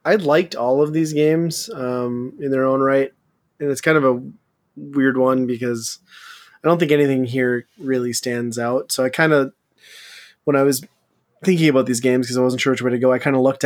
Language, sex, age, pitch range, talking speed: English, male, 20-39, 125-140 Hz, 220 wpm